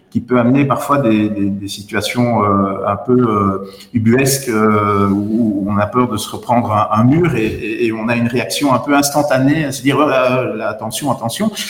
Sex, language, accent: male, French, French